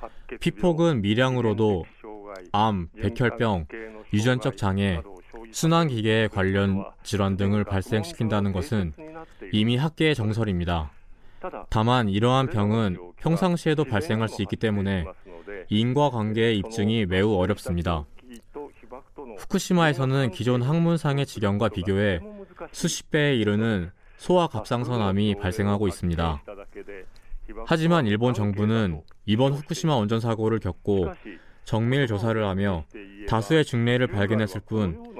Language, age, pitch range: Korean, 20-39, 100-130 Hz